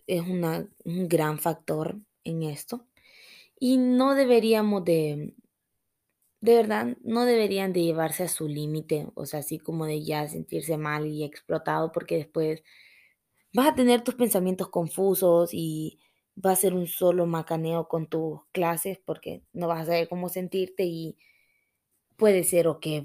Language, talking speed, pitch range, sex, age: Spanish, 155 wpm, 165-240 Hz, female, 20-39